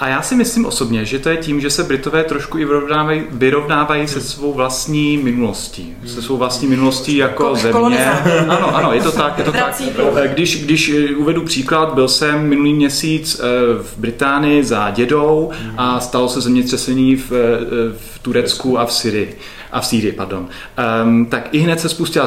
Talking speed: 165 wpm